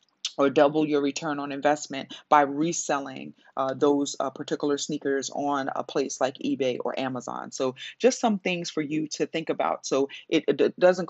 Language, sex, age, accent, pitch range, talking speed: English, female, 30-49, American, 145-175 Hz, 180 wpm